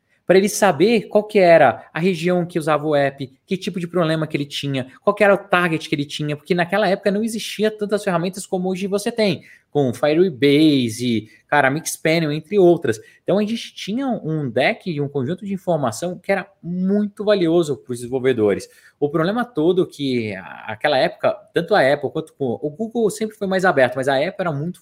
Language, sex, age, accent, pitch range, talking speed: Portuguese, male, 20-39, Brazilian, 150-200 Hz, 205 wpm